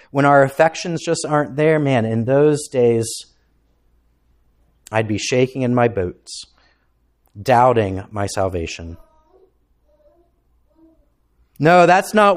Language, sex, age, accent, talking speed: English, male, 30-49, American, 105 wpm